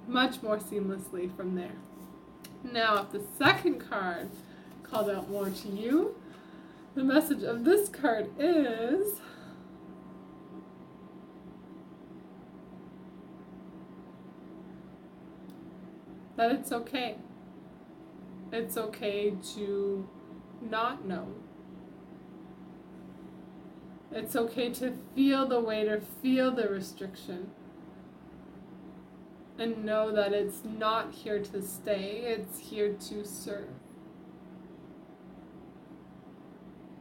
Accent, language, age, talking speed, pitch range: American, English, 20-39, 85 wpm, 205-245 Hz